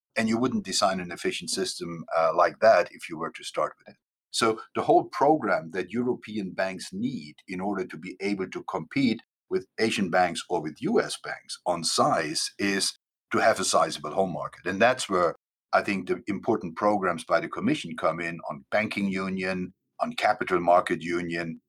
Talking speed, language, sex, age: 190 wpm, English, male, 50-69